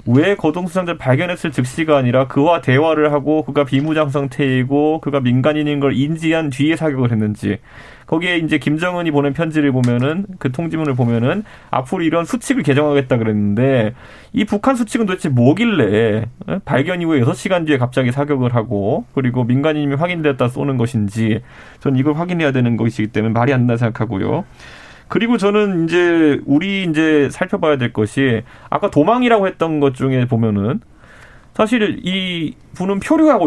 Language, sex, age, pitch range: Korean, male, 30-49, 125-165 Hz